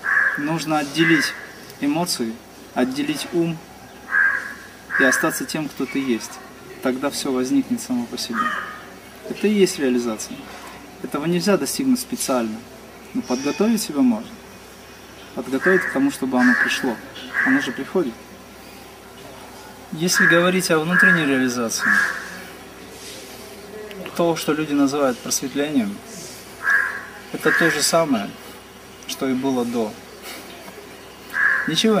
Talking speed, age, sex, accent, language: 105 wpm, 30-49, male, native, Russian